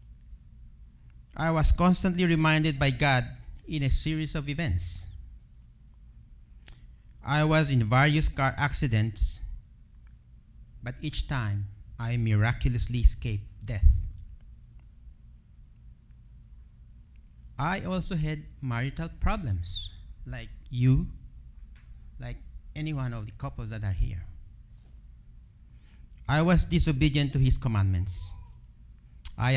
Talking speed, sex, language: 95 wpm, male, English